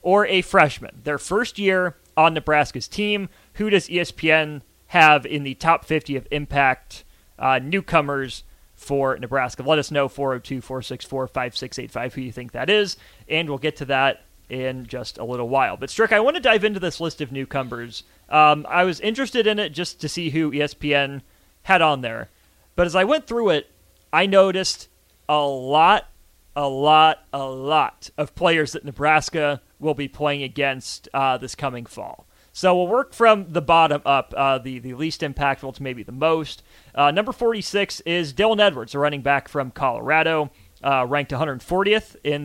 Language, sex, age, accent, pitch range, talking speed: English, male, 30-49, American, 135-175 Hz, 180 wpm